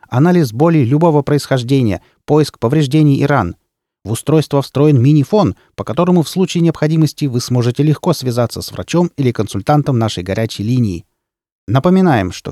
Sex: male